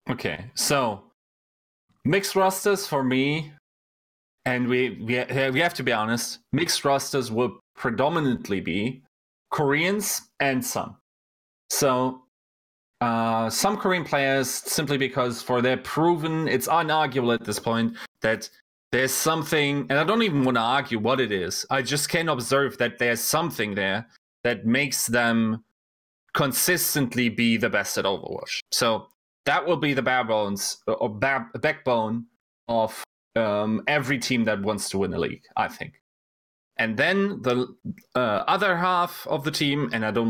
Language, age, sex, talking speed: English, 20-39, male, 150 wpm